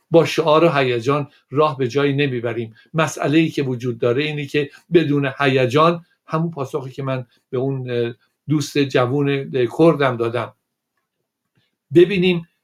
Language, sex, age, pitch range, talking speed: Persian, male, 60-79, 125-160 Hz, 130 wpm